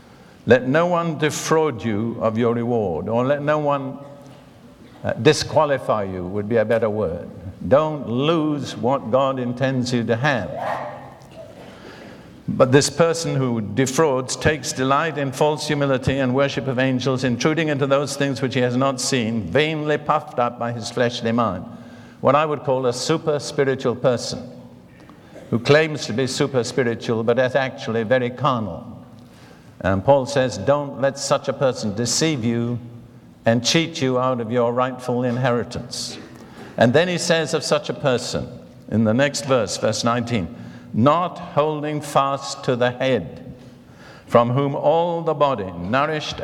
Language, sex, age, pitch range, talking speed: English, male, 60-79, 120-145 Hz, 155 wpm